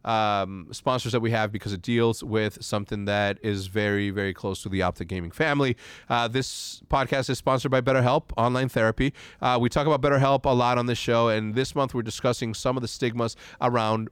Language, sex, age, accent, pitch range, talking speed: English, male, 30-49, American, 110-140 Hz, 210 wpm